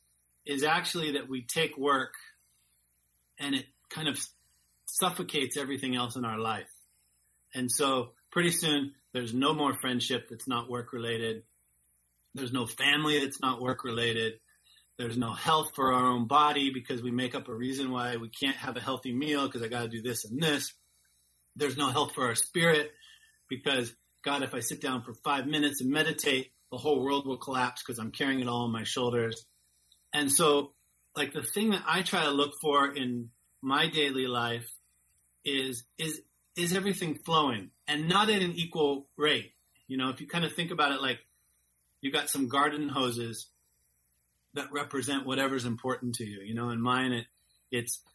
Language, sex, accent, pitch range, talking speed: English, male, American, 115-145 Hz, 180 wpm